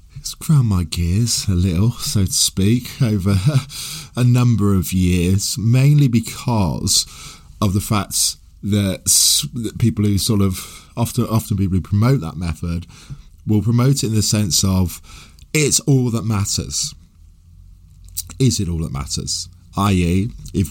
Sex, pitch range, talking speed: male, 85-110 Hz, 140 wpm